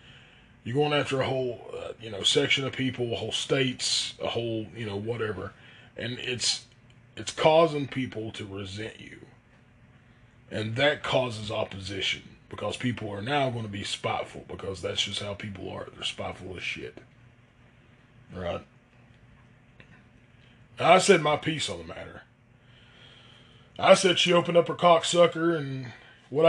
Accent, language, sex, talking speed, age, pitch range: American, English, male, 150 wpm, 20-39, 115-135 Hz